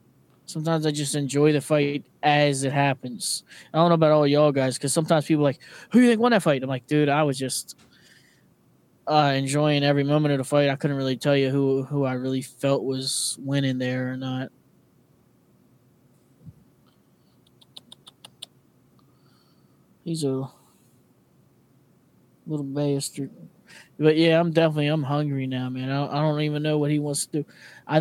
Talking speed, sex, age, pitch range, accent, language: 165 wpm, male, 20-39, 135-150 Hz, American, English